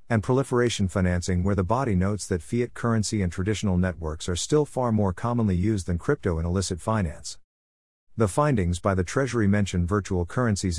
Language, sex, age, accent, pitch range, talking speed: English, male, 50-69, American, 90-110 Hz, 180 wpm